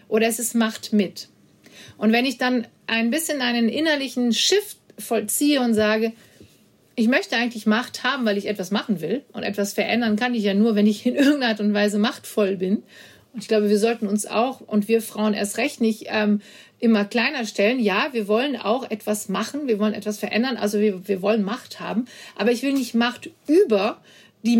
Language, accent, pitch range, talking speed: German, German, 210-245 Hz, 205 wpm